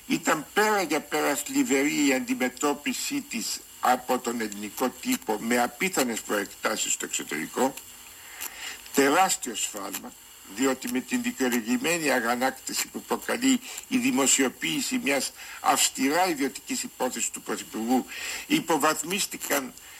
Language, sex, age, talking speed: Greek, male, 70-89, 105 wpm